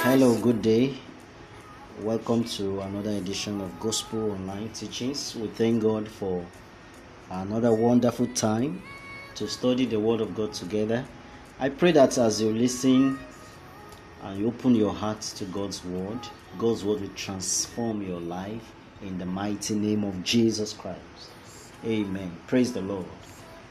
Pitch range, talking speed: 95-115 Hz, 140 wpm